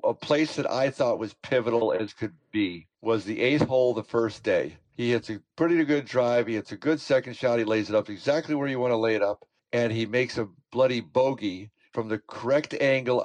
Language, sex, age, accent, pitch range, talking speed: English, male, 50-69, American, 110-135 Hz, 230 wpm